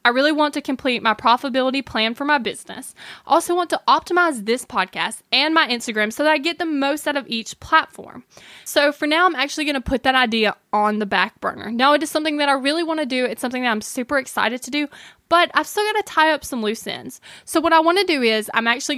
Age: 20-39